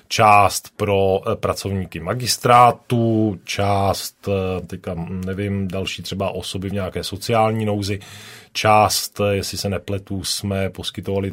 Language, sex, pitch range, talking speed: Czech, male, 95-110 Hz, 100 wpm